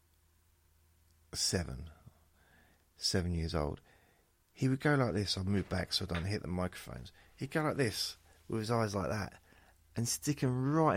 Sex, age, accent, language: male, 40-59, British, English